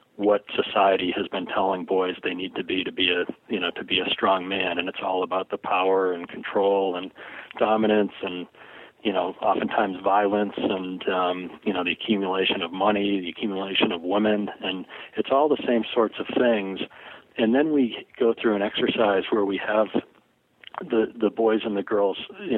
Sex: male